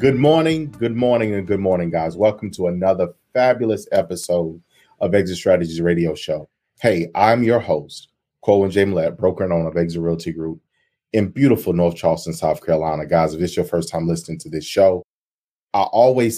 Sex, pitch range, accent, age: male, 90-115 Hz, American, 30-49